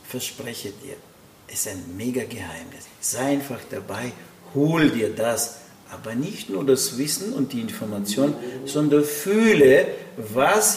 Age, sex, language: 50-69, male, German